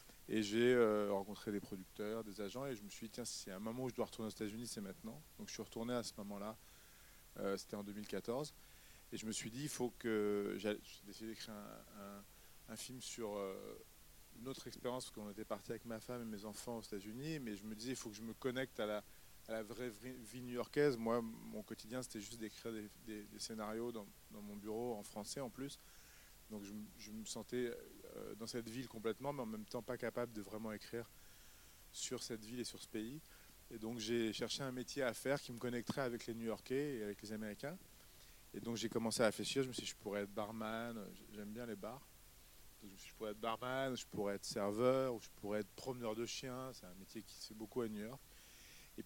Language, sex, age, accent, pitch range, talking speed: French, male, 30-49, French, 105-125 Hz, 235 wpm